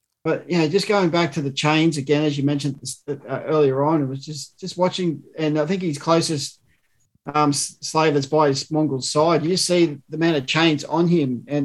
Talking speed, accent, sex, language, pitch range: 230 wpm, Australian, male, English, 145-170 Hz